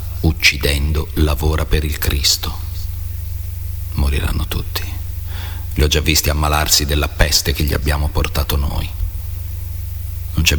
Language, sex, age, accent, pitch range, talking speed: Italian, male, 40-59, native, 75-90 Hz, 120 wpm